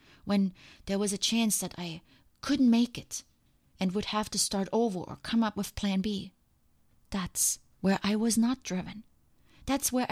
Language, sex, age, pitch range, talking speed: English, female, 30-49, 185-225 Hz, 180 wpm